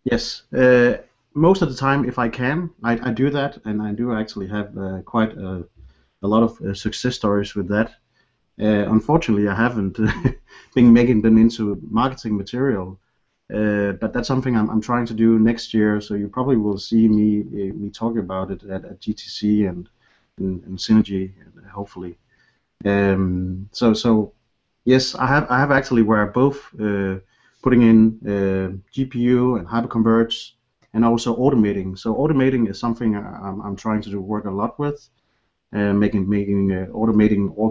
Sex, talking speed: male, 175 wpm